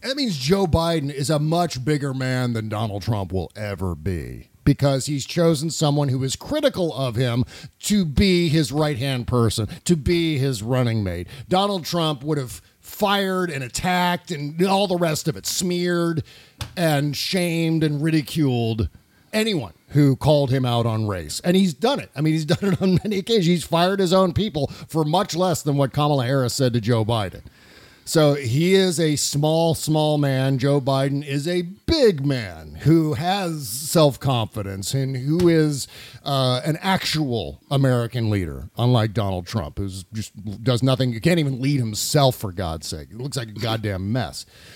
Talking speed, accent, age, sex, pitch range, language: 180 wpm, American, 50-69, male, 120-165 Hz, English